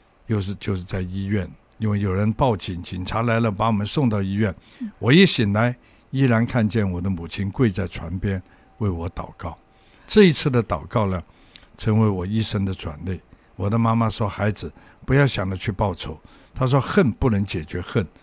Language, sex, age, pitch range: Chinese, male, 60-79, 95-130 Hz